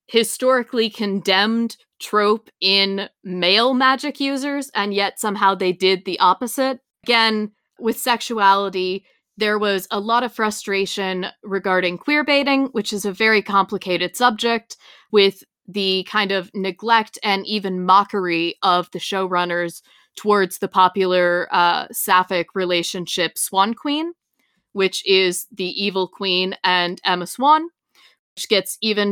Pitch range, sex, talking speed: 185-230 Hz, female, 130 wpm